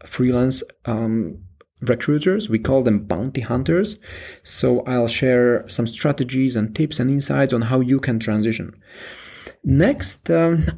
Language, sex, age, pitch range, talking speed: English, male, 30-49, 120-140 Hz, 135 wpm